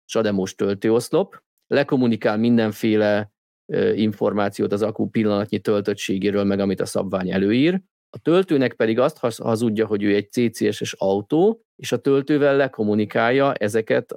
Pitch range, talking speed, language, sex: 105-140 Hz, 120 wpm, Hungarian, male